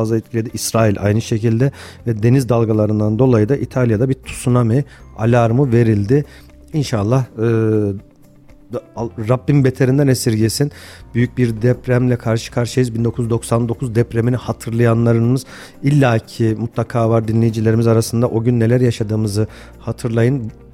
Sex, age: male, 50-69